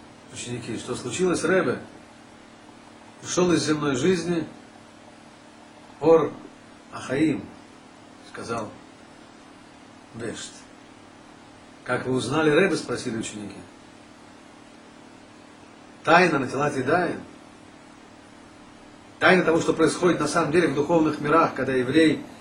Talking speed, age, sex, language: 90 wpm, 40-59, male, Russian